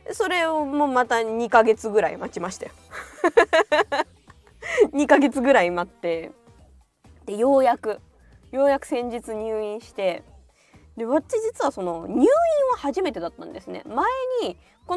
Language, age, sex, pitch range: Japanese, 20-39, female, 200-315 Hz